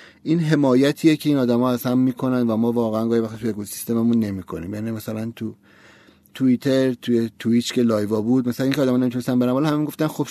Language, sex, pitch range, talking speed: Persian, male, 125-155 Hz, 205 wpm